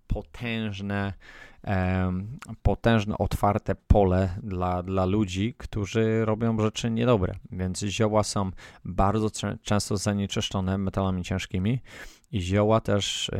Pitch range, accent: 95-110 Hz, native